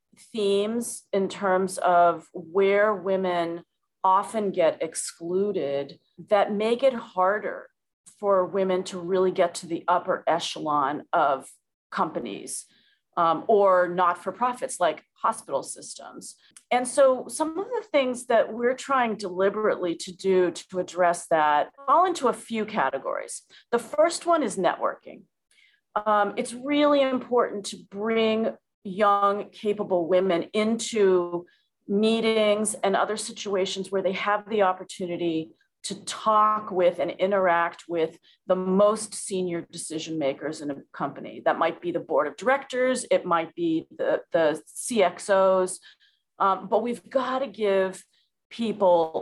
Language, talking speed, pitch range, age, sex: English, 130 wpm, 180-235 Hz, 40-59, female